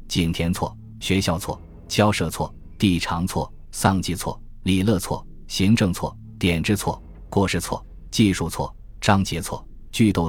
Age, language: 20-39, Chinese